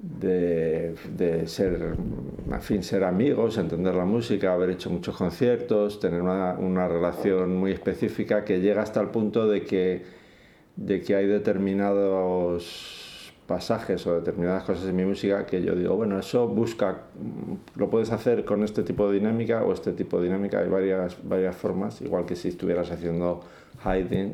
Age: 50-69